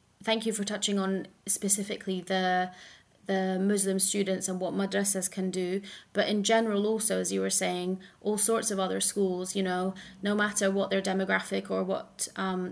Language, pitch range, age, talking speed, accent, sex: English, 185-210 Hz, 30-49, 180 wpm, British, female